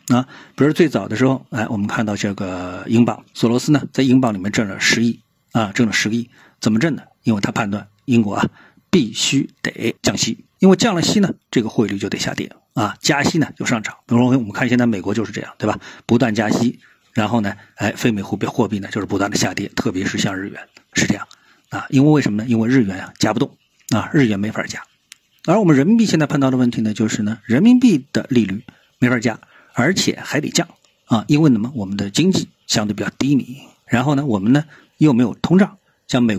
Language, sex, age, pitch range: Chinese, male, 50-69, 110-155 Hz